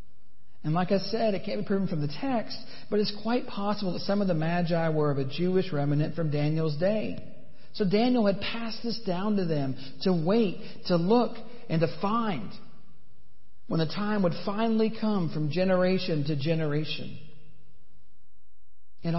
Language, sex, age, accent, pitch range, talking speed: English, male, 50-69, American, 150-205 Hz, 170 wpm